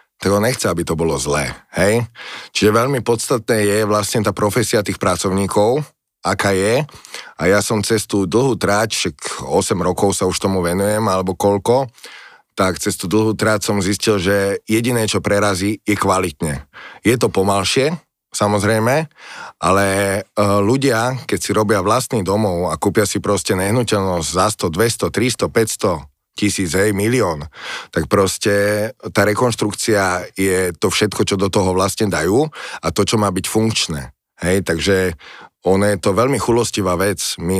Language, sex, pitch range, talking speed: Slovak, male, 95-110 Hz, 155 wpm